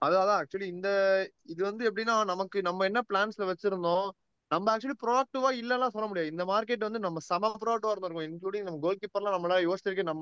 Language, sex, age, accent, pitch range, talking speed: Tamil, male, 20-39, native, 165-205 Hz, 180 wpm